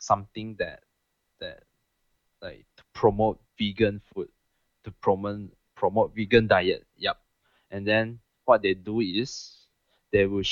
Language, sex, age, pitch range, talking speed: English, male, 20-39, 95-110 Hz, 125 wpm